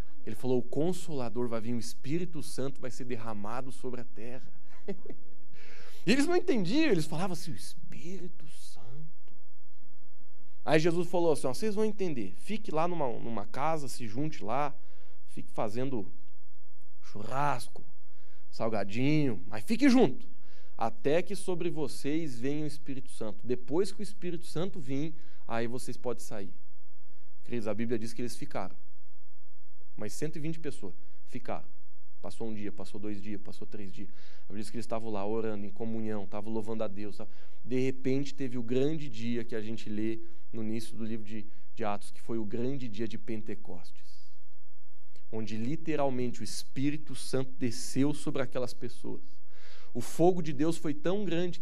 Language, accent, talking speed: Portuguese, Brazilian, 155 wpm